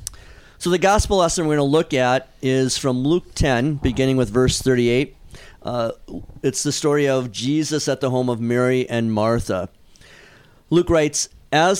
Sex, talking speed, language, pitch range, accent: male, 170 wpm, English, 115-145 Hz, American